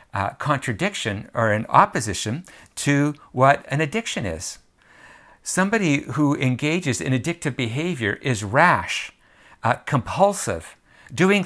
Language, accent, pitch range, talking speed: English, American, 120-155 Hz, 110 wpm